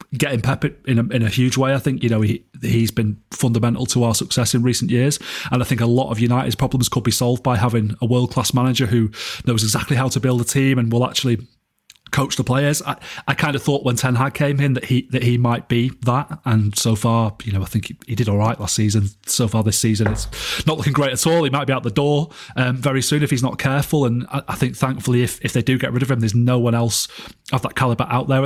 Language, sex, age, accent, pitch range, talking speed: English, male, 30-49, British, 120-140 Hz, 270 wpm